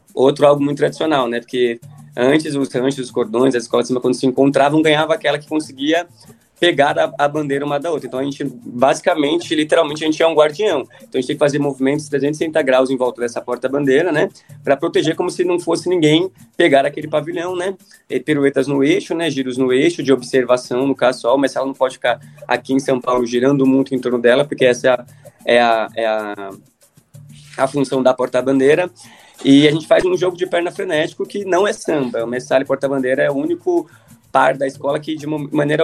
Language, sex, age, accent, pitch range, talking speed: Portuguese, male, 20-39, Brazilian, 130-160 Hz, 210 wpm